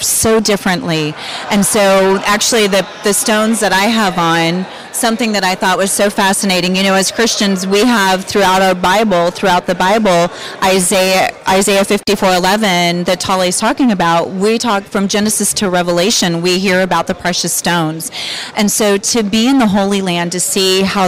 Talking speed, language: 175 wpm, English